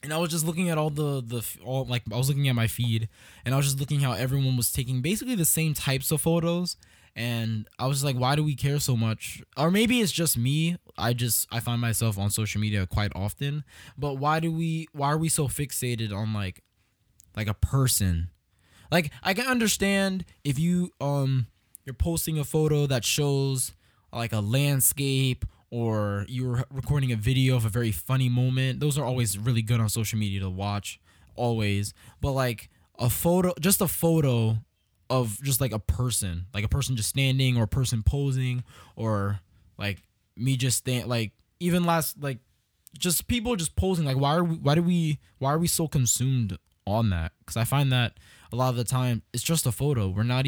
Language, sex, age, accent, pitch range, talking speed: English, male, 20-39, American, 105-145 Hz, 205 wpm